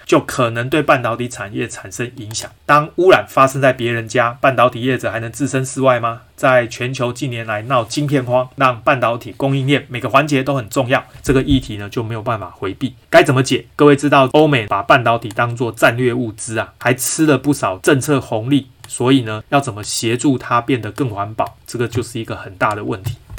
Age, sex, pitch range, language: 30-49, male, 115-135 Hz, Chinese